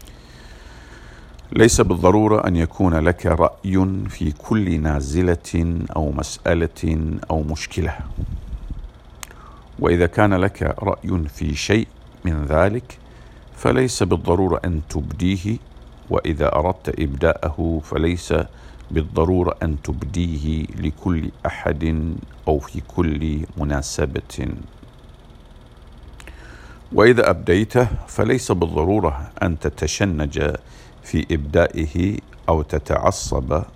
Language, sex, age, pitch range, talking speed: English, male, 50-69, 75-90 Hz, 85 wpm